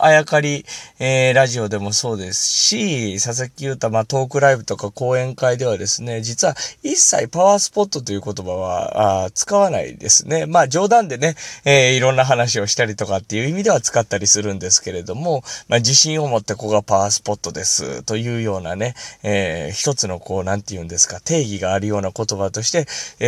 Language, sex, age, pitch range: Japanese, male, 20-39, 105-140 Hz